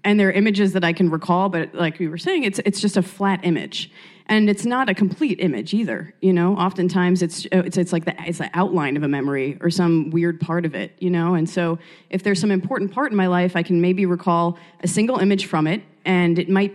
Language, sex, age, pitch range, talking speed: English, female, 30-49, 165-195 Hz, 250 wpm